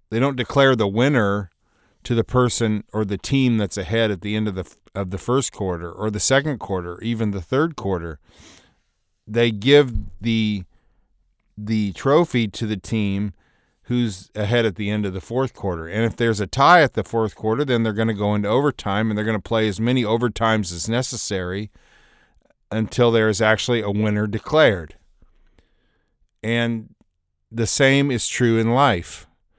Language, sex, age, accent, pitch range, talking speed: English, male, 40-59, American, 100-120 Hz, 175 wpm